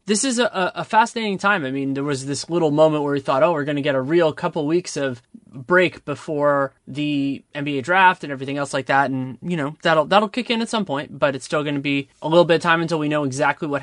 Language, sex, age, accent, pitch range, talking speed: English, male, 20-39, American, 140-165 Hz, 270 wpm